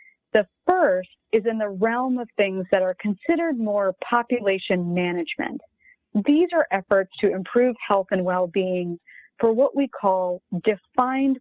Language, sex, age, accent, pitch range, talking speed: English, female, 30-49, American, 185-255 Hz, 140 wpm